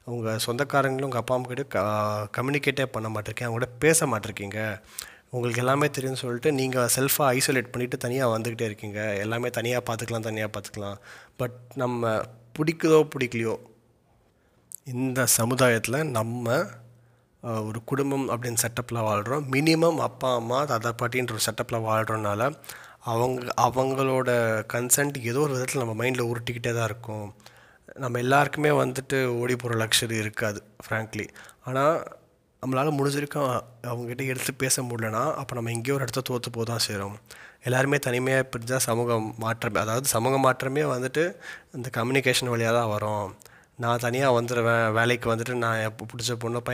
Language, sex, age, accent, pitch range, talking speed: Tamil, male, 30-49, native, 115-130 Hz, 135 wpm